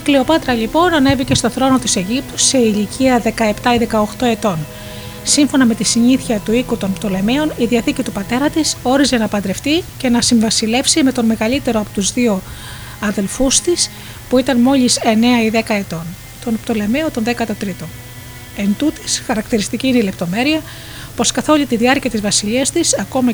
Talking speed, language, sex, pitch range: 195 wpm, Greek, female, 205-265 Hz